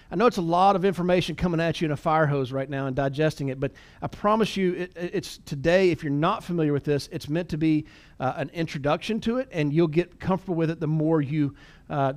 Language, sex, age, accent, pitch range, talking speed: English, male, 40-59, American, 145-180 Hz, 255 wpm